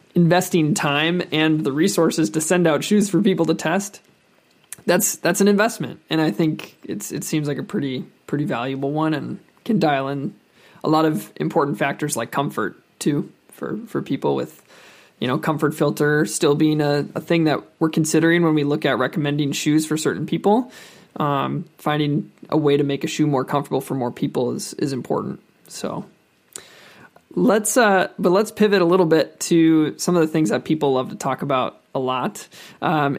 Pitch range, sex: 150-180 Hz, male